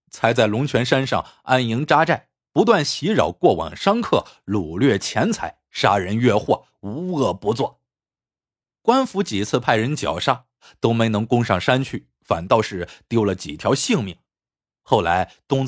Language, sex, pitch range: Chinese, male, 110-145 Hz